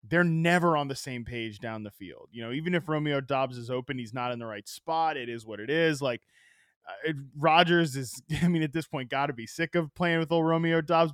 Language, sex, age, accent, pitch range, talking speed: English, male, 20-39, American, 130-180 Hz, 255 wpm